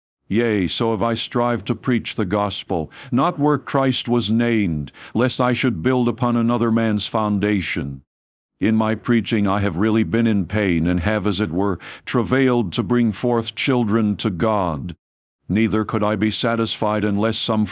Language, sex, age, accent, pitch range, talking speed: English, male, 50-69, American, 95-115 Hz, 170 wpm